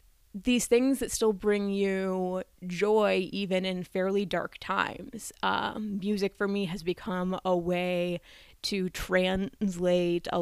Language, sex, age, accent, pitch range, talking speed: English, female, 20-39, American, 175-205 Hz, 135 wpm